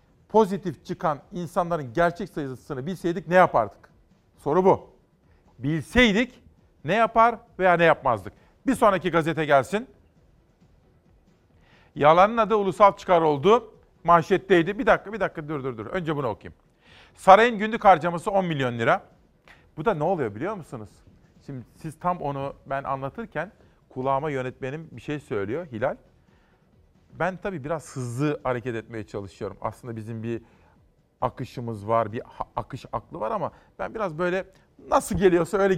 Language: Turkish